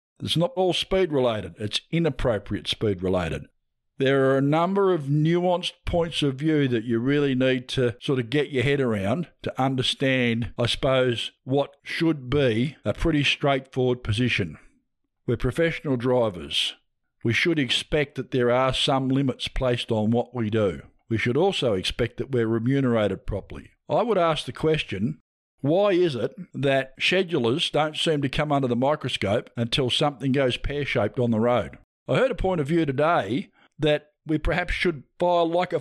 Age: 50-69